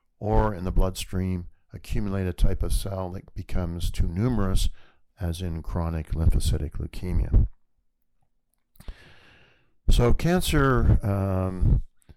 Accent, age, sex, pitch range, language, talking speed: American, 50-69, male, 85-100 Hz, English, 105 wpm